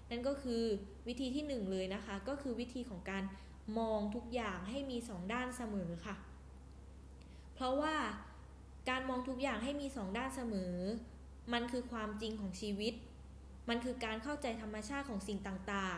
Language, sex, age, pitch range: Thai, female, 10-29, 200-245 Hz